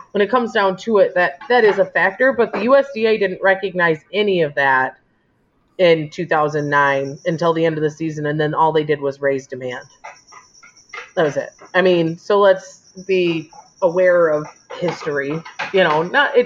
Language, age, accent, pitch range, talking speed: English, 30-49, American, 175-245 Hz, 180 wpm